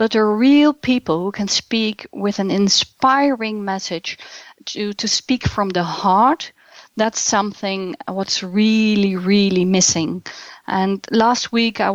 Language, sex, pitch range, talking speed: English, female, 190-240 Hz, 135 wpm